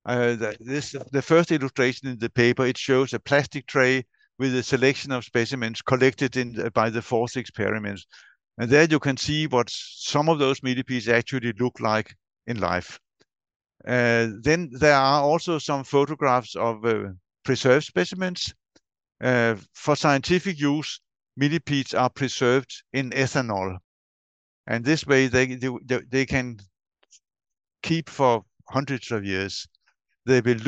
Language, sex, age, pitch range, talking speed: English, male, 60-79, 115-145 Hz, 145 wpm